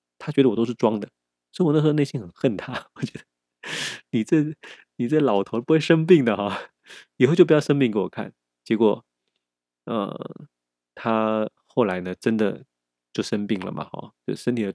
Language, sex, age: Chinese, male, 20-39